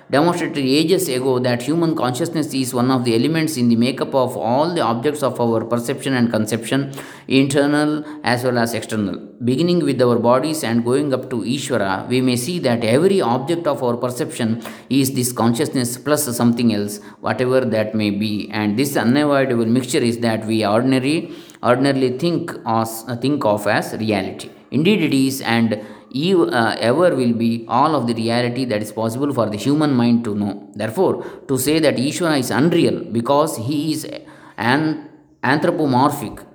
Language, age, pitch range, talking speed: English, 20-39, 115-145 Hz, 175 wpm